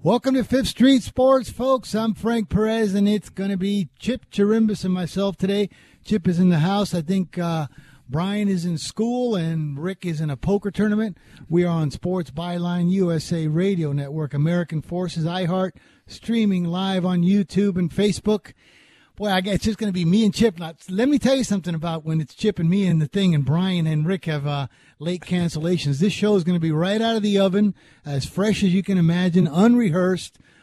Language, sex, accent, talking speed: English, male, American, 205 wpm